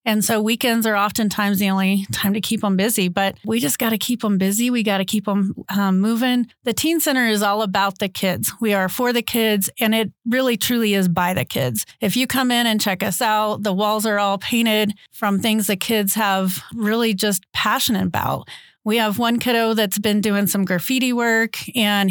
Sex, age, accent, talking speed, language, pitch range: female, 30-49, American, 220 wpm, English, 200-235 Hz